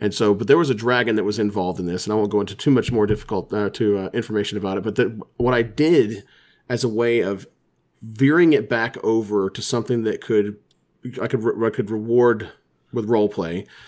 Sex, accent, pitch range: male, American, 100-125 Hz